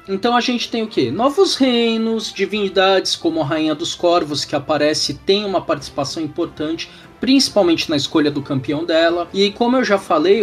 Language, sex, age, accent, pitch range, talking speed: Portuguese, male, 20-39, Brazilian, 145-230 Hz, 180 wpm